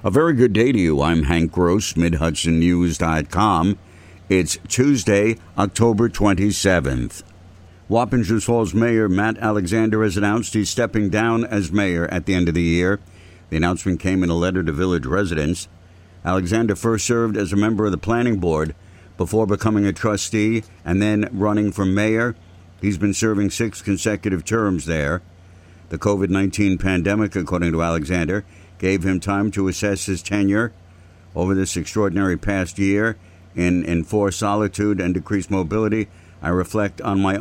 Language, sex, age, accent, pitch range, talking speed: English, male, 60-79, American, 90-105 Hz, 150 wpm